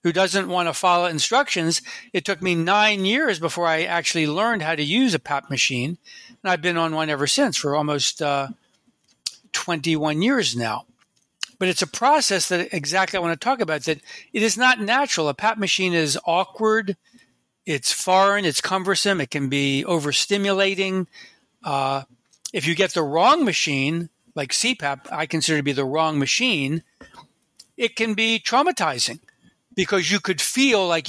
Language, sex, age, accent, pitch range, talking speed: English, male, 60-79, American, 150-210 Hz, 170 wpm